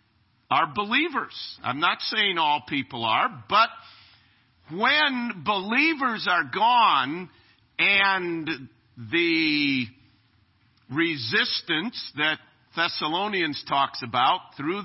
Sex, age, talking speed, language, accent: male, 50-69, 85 wpm, English, American